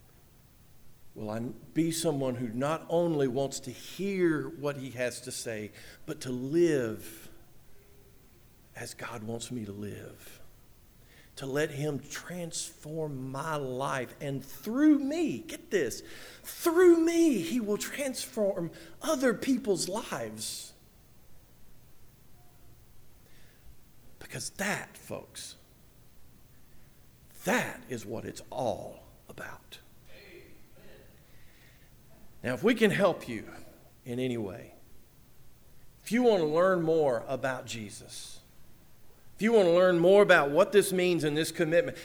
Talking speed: 115 wpm